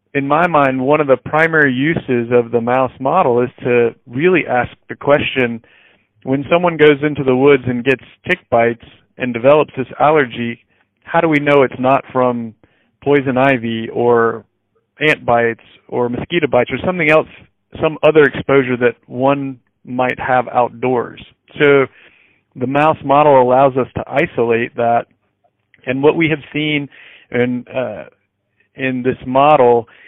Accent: American